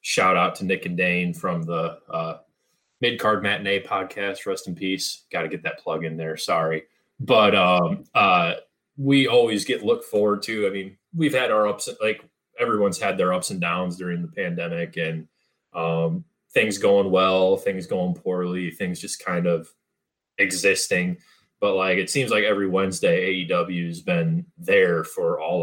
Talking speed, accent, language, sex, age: 175 wpm, American, English, male, 20-39